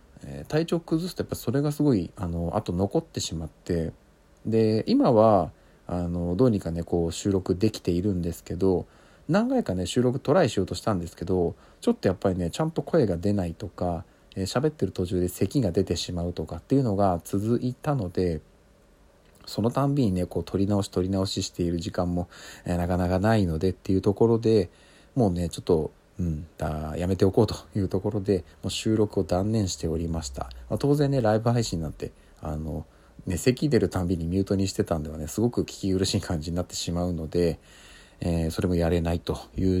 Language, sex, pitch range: Japanese, male, 85-105 Hz